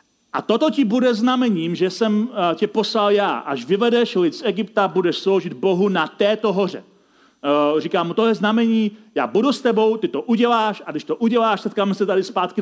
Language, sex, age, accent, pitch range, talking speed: Czech, male, 40-59, native, 175-230 Hz, 195 wpm